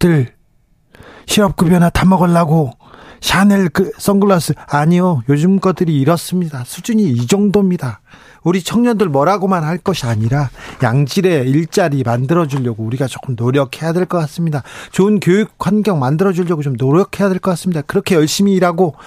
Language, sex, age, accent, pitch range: Korean, male, 40-59, native, 140-190 Hz